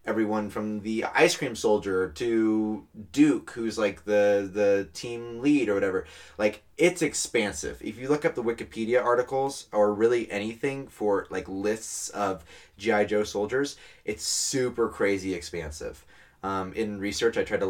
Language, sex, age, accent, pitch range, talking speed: English, male, 20-39, American, 90-115 Hz, 155 wpm